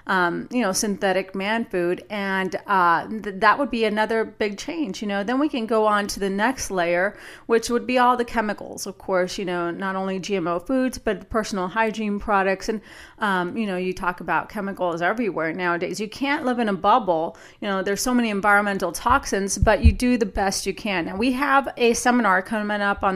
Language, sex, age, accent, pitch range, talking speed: English, female, 30-49, American, 185-220 Hz, 210 wpm